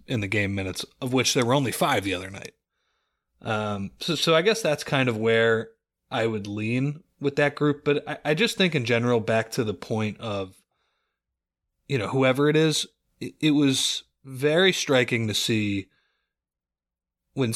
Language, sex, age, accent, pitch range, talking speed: English, male, 30-49, American, 110-140 Hz, 180 wpm